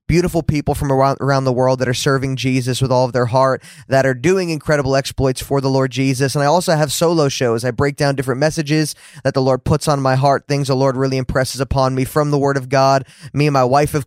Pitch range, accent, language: 130-145 Hz, American, English